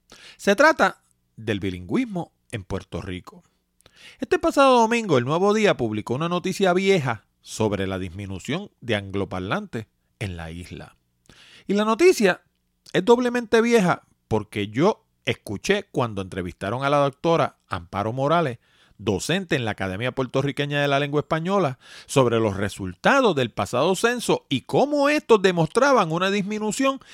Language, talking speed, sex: Spanish, 135 wpm, male